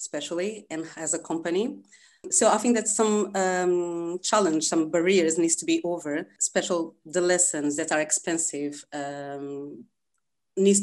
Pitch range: 155-180 Hz